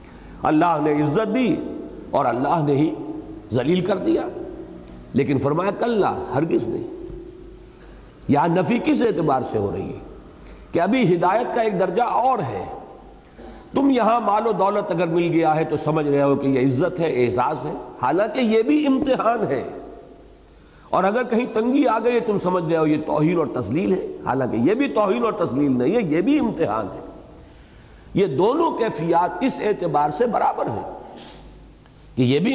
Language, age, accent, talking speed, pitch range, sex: English, 50-69, Indian, 130 wpm, 145-235 Hz, male